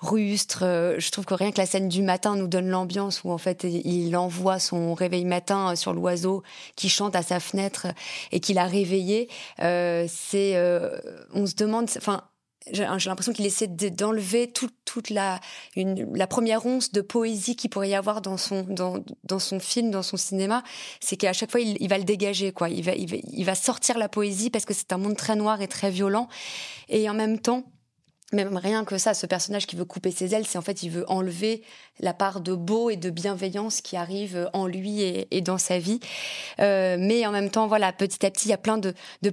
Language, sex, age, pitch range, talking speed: French, female, 20-39, 185-220 Hz, 225 wpm